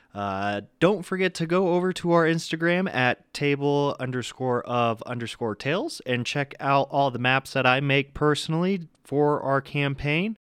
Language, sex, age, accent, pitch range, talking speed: English, male, 20-39, American, 115-150 Hz, 160 wpm